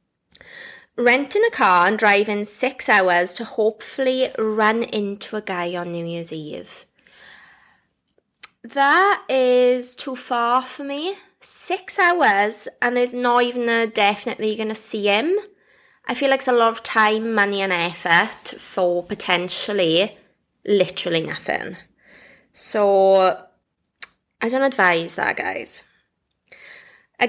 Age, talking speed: 20-39, 130 wpm